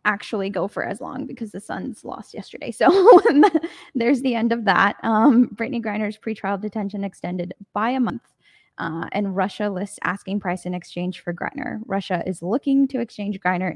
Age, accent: 10-29, American